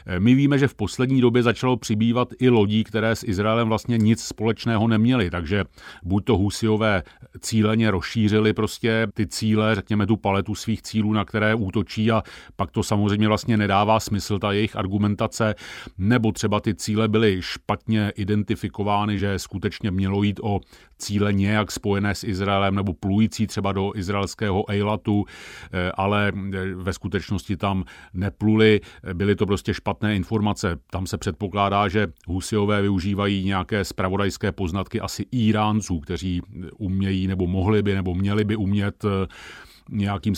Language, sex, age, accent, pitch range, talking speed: Czech, male, 40-59, native, 100-110 Hz, 145 wpm